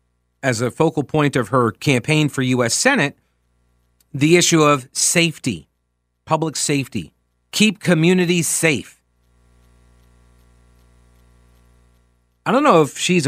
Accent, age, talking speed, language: American, 40-59, 110 wpm, English